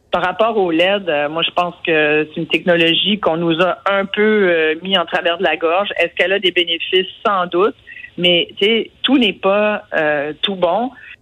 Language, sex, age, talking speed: French, female, 50-69, 205 wpm